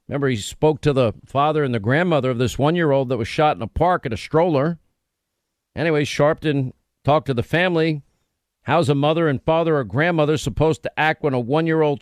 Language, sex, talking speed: English, male, 200 wpm